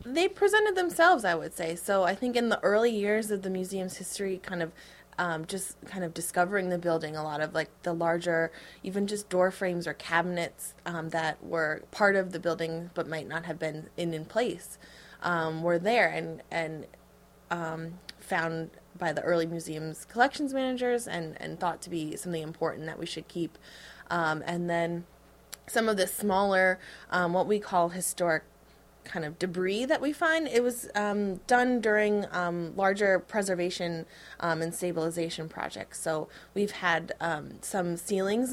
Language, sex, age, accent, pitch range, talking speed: English, female, 20-39, American, 165-205 Hz, 175 wpm